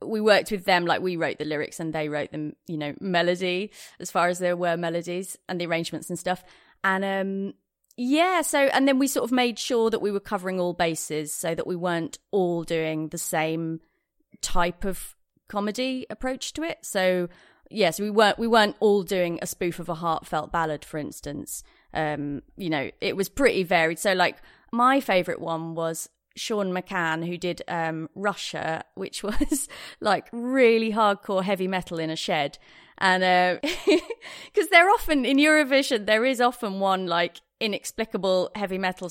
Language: English